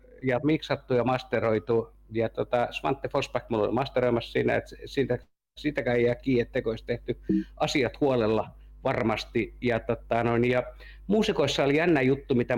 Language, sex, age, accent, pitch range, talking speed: Finnish, male, 50-69, native, 120-140 Hz, 140 wpm